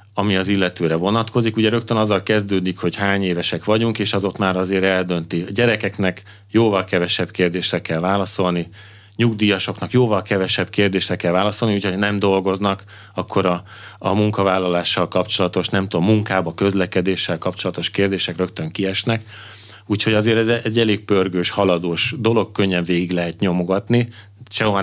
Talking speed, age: 145 wpm, 30-49